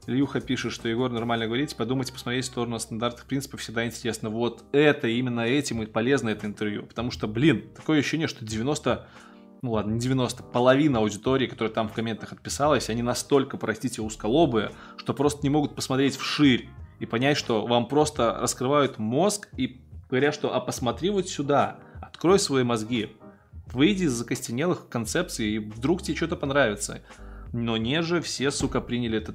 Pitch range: 115-145 Hz